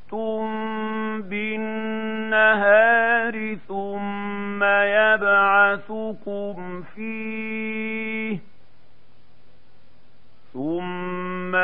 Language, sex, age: Arabic, male, 50-69